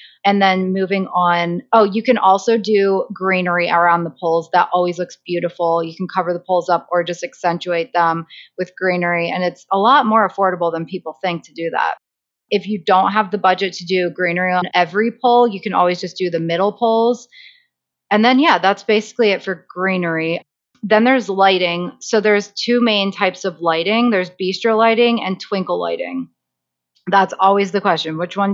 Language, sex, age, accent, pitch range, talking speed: English, female, 30-49, American, 180-210 Hz, 190 wpm